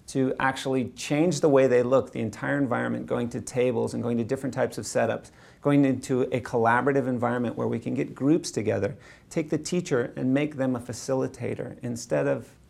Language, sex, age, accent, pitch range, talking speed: English, male, 40-59, American, 120-140 Hz, 195 wpm